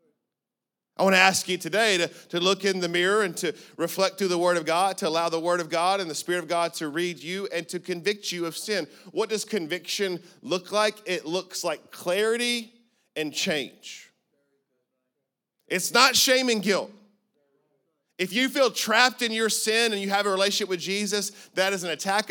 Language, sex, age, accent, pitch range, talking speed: English, male, 30-49, American, 175-210 Hz, 200 wpm